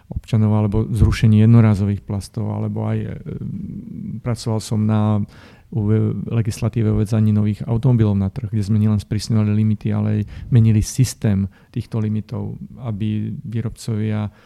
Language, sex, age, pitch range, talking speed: Slovak, male, 40-59, 105-115 Hz, 125 wpm